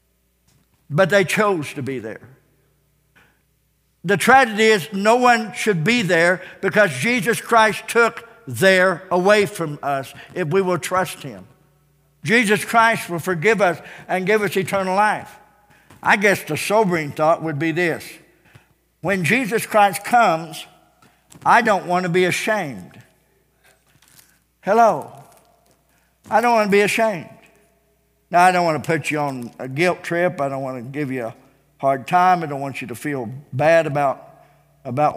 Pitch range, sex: 145-185 Hz, male